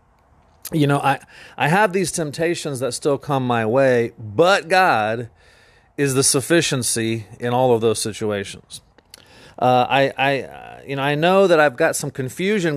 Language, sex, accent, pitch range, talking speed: English, male, American, 120-155 Hz, 160 wpm